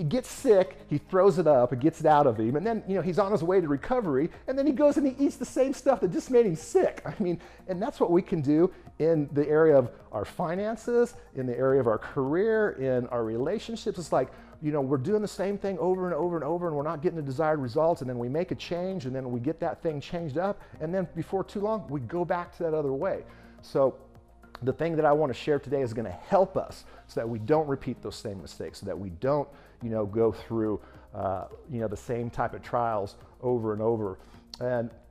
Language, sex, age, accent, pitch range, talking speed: English, male, 40-59, American, 120-175 Hz, 255 wpm